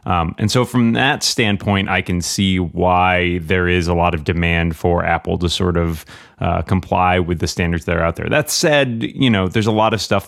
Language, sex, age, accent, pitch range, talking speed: English, male, 30-49, American, 90-105 Hz, 230 wpm